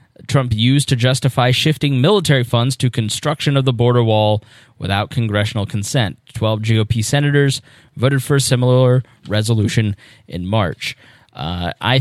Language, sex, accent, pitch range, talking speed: English, male, American, 115-140 Hz, 140 wpm